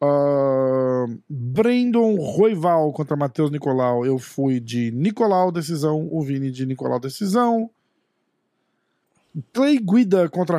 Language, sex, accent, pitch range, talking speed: Portuguese, male, Brazilian, 135-180 Hz, 100 wpm